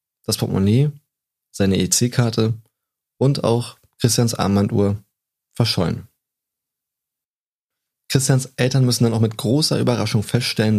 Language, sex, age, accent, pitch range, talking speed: German, male, 20-39, German, 105-125 Hz, 100 wpm